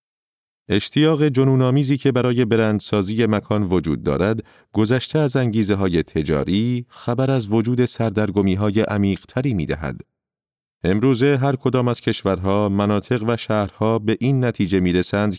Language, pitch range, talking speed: Persian, 100-125 Hz, 120 wpm